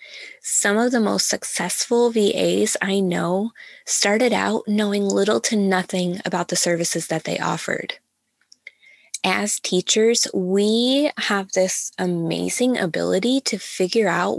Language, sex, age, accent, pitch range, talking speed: English, female, 20-39, American, 185-230 Hz, 125 wpm